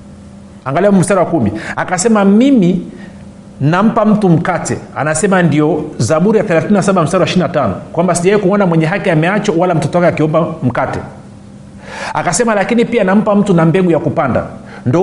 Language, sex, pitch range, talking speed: Swahili, male, 160-205 Hz, 150 wpm